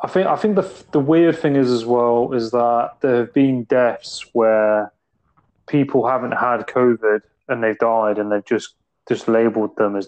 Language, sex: English, male